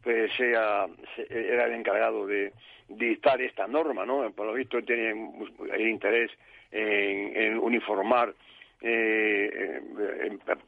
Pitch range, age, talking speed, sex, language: 115-140 Hz, 60-79, 110 wpm, male, Spanish